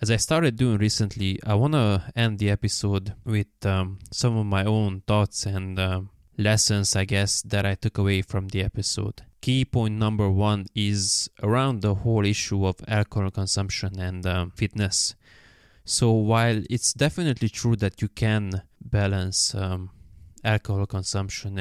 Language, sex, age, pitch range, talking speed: English, male, 20-39, 95-110 Hz, 160 wpm